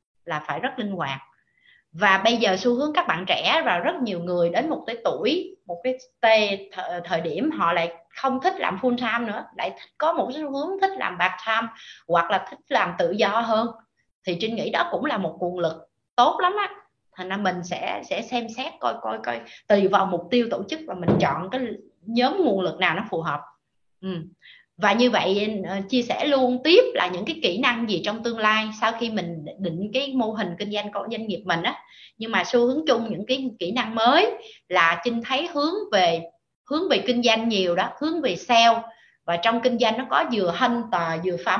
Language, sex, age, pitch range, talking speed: Vietnamese, female, 20-39, 180-250 Hz, 220 wpm